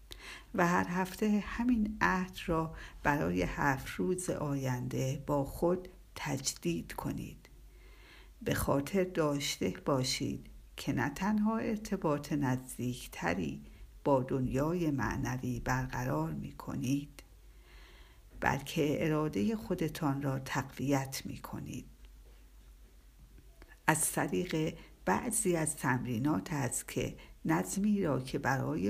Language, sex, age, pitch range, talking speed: Persian, female, 60-79, 130-175 Hz, 100 wpm